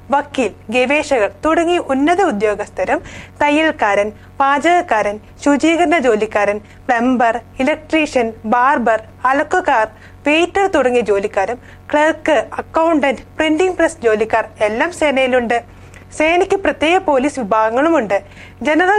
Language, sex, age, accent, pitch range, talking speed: Malayalam, female, 30-49, native, 225-315 Hz, 90 wpm